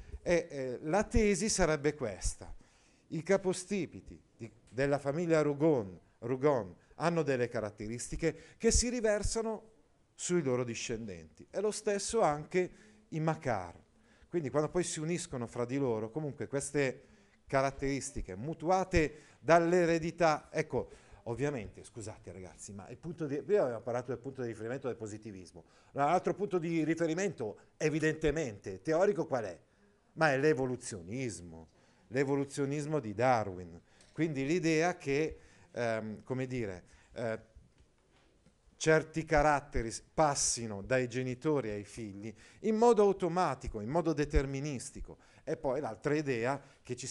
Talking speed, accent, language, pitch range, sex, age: 125 wpm, native, Italian, 115-160 Hz, male, 40-59